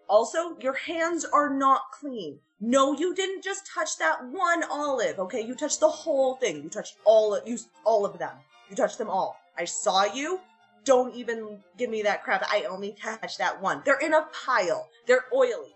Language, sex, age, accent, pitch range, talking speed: English, female, 20-39, American, 235-355 Hz, 190 wpm